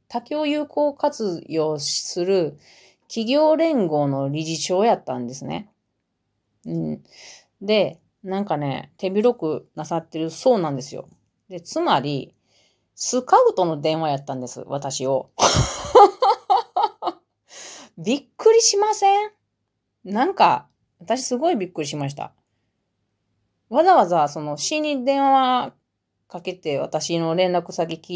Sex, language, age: female, Japanese, 30-49